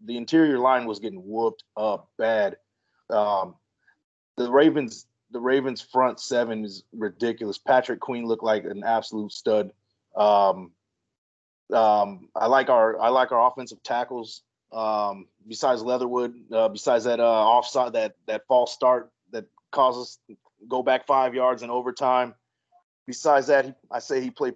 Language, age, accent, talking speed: English, 30-49, American, 145 wpm